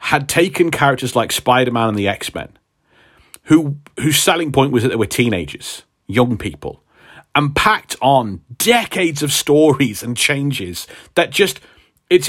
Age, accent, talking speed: 40-59, British, 150 wpm